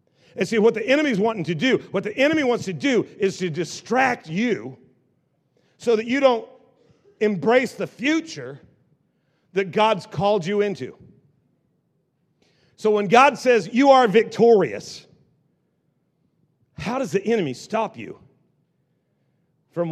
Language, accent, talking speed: English, American, 135 wpm